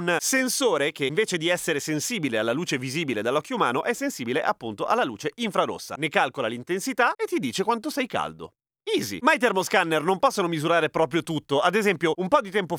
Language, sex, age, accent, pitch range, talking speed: Italian, male, 30-49, native, 135-195 Hz, 190 wpm